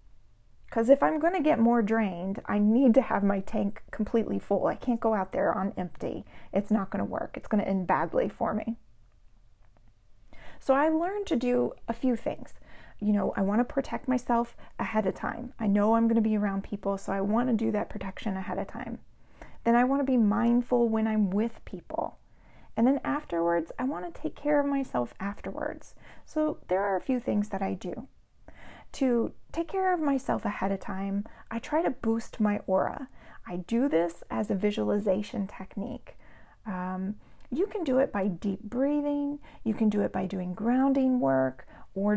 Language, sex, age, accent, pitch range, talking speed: English, female, 30-49, American, 190-245 Hz, 185 wpm